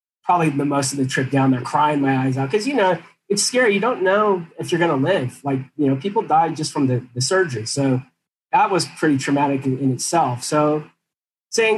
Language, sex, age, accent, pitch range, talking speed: English, male, 30-49, American, 130-160 Hz, 230 wpm